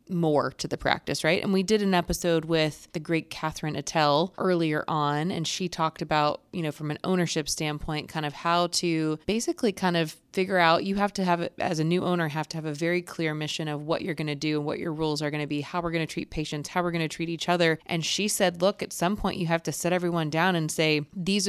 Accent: American